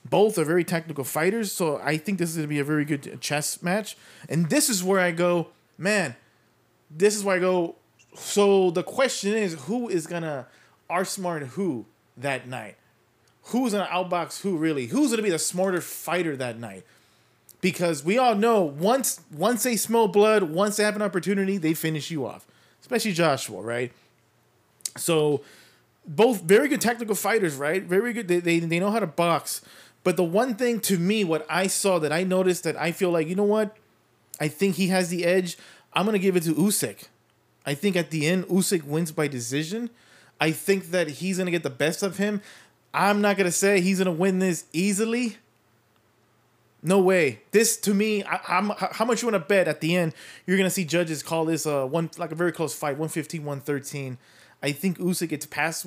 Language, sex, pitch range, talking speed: English, male, 150-200 Hz, 205 wpm